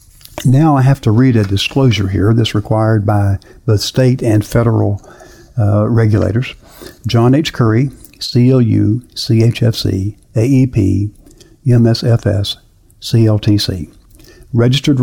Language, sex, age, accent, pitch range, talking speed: English, male, 60-79, American, 105-125 Hz, 105 wpm